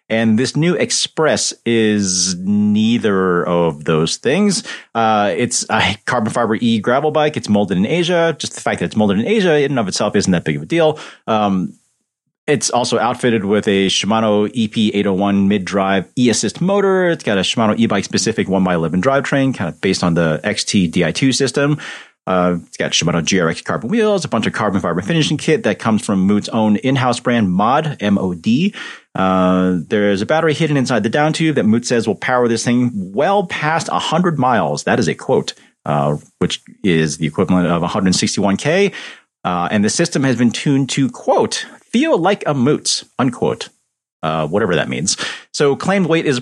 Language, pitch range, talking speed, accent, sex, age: English, 95-155 Hz, 185 wpm, American, male, 30-49